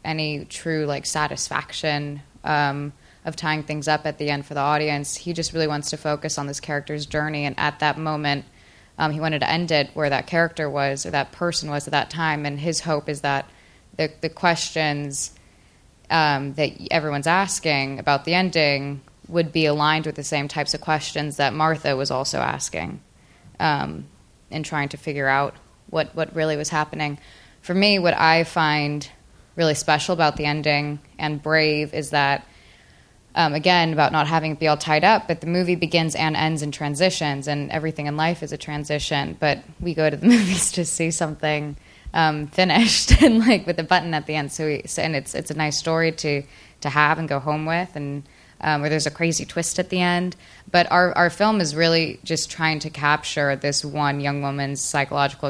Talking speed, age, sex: 200 wpm, 20-39, female